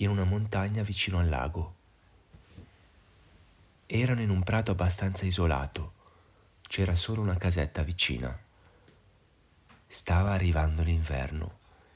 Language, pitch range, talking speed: Italian, 80-105 Hz, 100 wpm